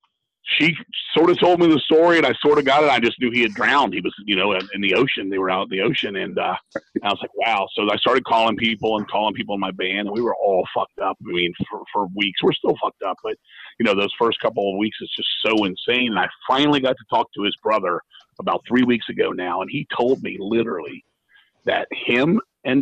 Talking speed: 260 wpm